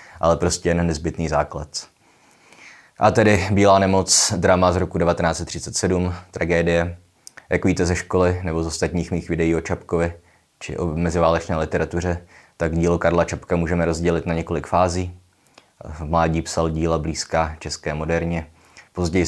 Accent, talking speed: native, 145 wpm